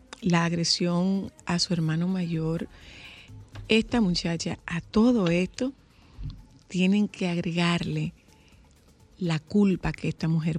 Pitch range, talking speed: 170-210 Hz, 110 wpm